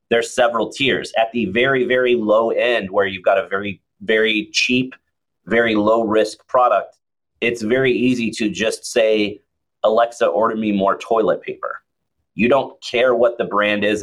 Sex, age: male, 30-49